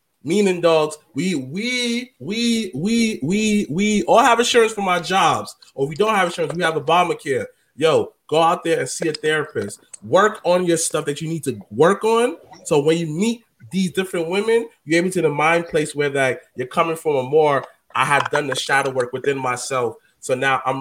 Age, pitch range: 20-39, 155-205 Hz